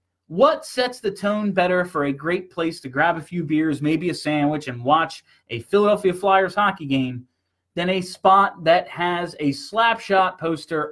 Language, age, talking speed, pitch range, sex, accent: English, 30-49, 175 wpm, 140-195 Hz, male, American